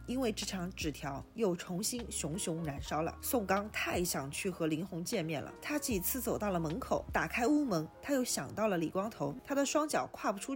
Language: Chinese